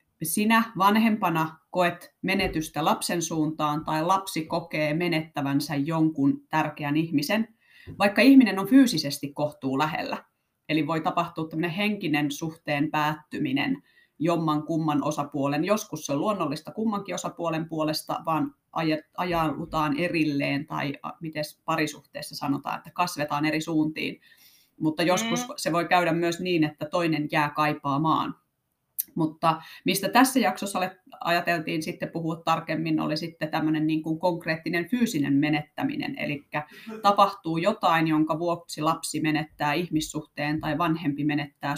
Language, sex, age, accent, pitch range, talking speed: Finnish, female, 30-49, native, 150-180 Hz, 120 wpm